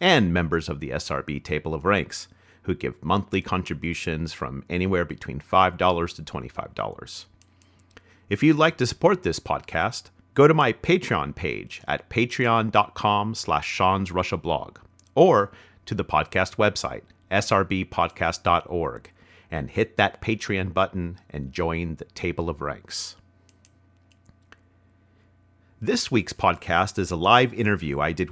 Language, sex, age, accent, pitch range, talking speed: English, male, 40-59, American, 90-110 Hz, 130 wpm